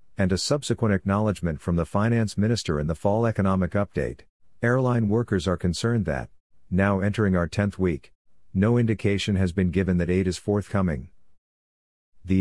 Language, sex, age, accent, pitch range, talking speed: English, male, 50-69, American, 85-100 Hz, 160 wpm